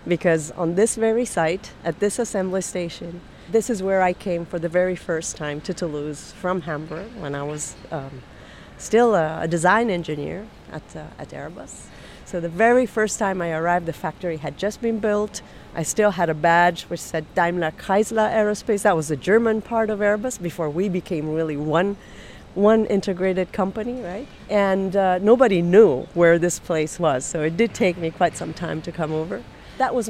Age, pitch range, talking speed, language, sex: 40-59, 170-220 Hz, 190 wpm, English, female